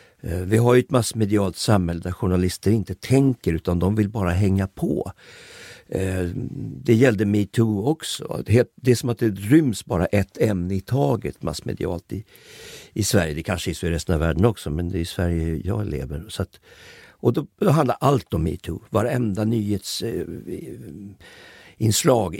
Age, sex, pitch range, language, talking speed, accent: 50-69, male, 85-110 Hz, Swedish, 170 wpm, native